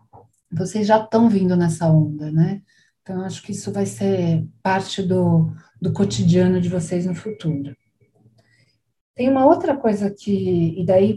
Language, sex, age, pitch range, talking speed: Portuguese, female, 40-59, 170-230 Hz, 150 wpm